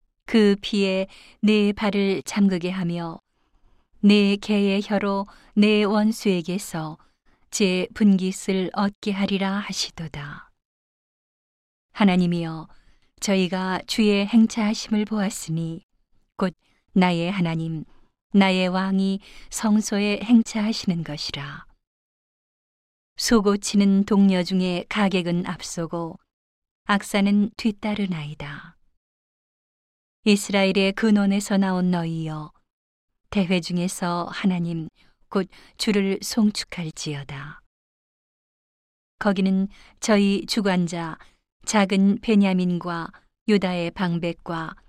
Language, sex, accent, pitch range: Korean, female, native, 175-205 Hz